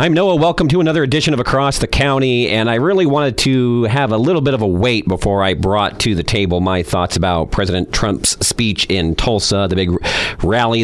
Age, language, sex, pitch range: 40-59, English, male, 95-135 Hz